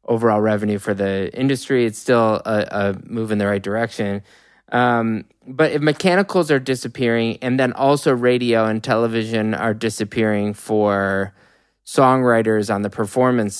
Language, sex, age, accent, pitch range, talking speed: English, male, 20-39, American, 110-130 Hz, 145 wpm